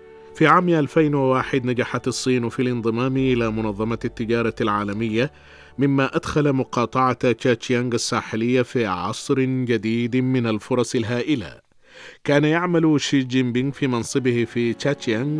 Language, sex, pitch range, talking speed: Arabic, male, 115-135 Hz, 115 wpm